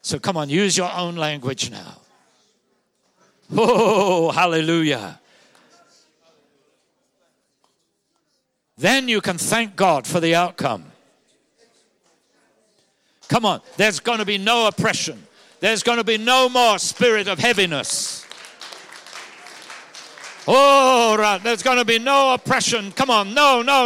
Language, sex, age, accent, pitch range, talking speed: English, male, 60-79, British, 200-270 Hz, 115 wpm